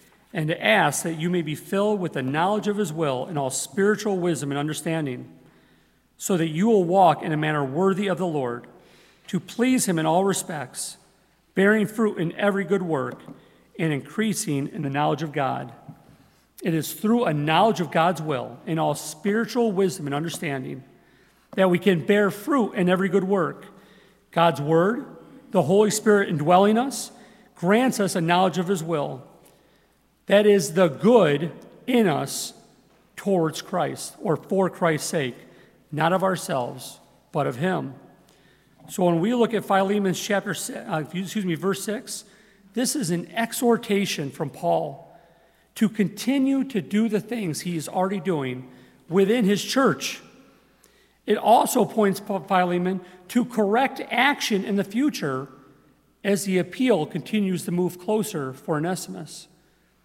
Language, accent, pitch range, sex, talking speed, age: English, American, 160-210 Hz, male, 155 wpm, 40-59